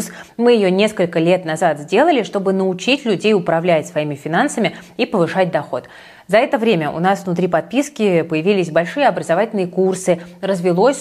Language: Russian